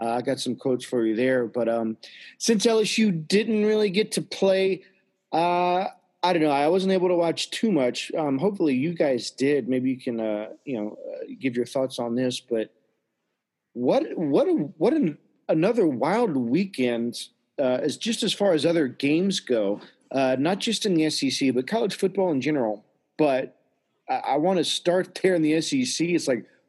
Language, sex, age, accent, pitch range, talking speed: English, male, 40-59, American, 130-200 Hz, 195 wpm